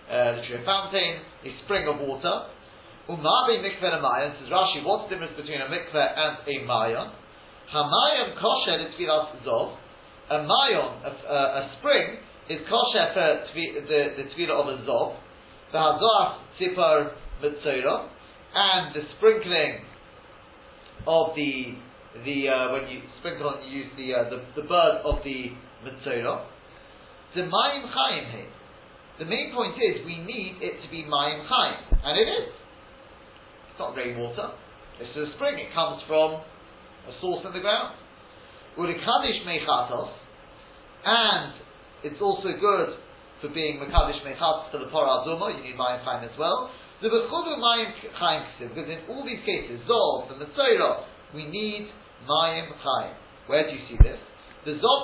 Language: English